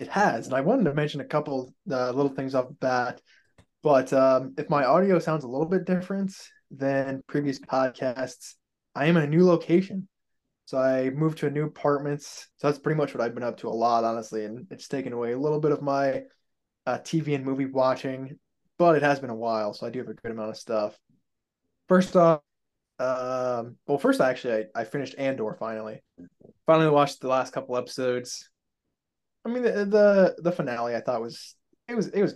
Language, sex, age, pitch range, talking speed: English, male, 20-39, 120-155 Hz, 210 wpm